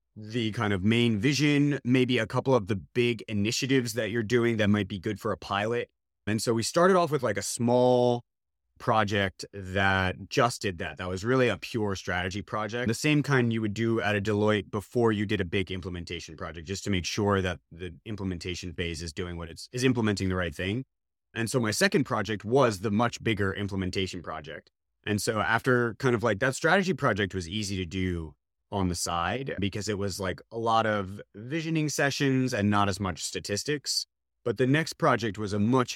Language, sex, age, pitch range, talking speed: English, male, 30-49, 95-120 Hz, 205 wpm